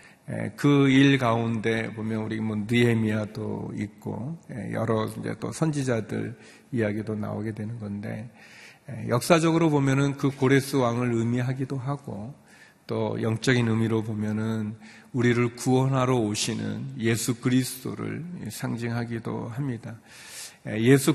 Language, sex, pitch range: Korean, male, 110-135 Hz